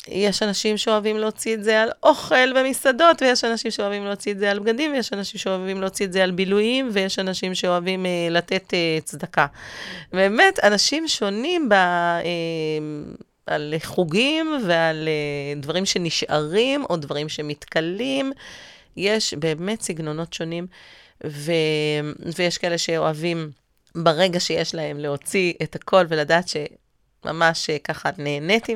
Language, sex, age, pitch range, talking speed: Hebrew, female, 30-49, 155-210 Hz, 135 wpm